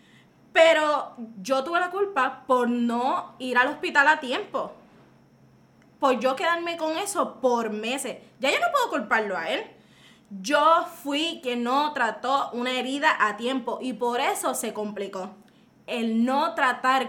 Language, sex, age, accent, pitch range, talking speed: Spanish, female, 10-29, American, 220-285 Hz, 150 wpm